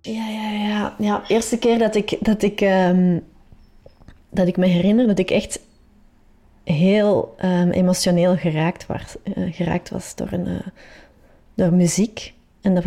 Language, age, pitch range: Dutch, 30-49, 175-205 Hz